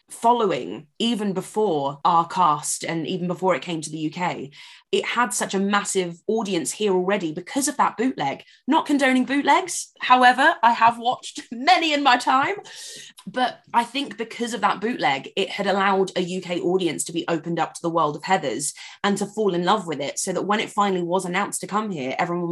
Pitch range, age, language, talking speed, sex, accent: 170-215 Hz, 20-39, English, 205 wpm, female, British